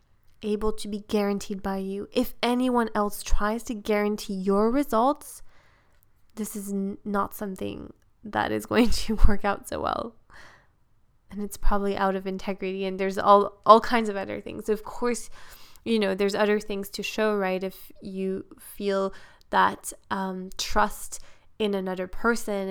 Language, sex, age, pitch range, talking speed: English, female, 20-39, 190-215 Hz, 155 wpm